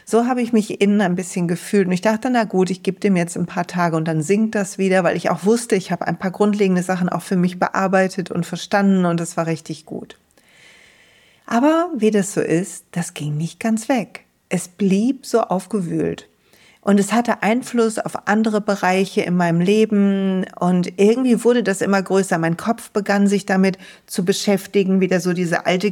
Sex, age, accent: female, 40-59, German